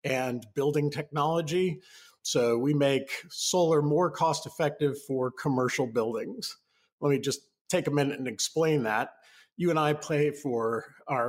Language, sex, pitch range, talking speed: English, male, 120-160 Hz, 145 wpm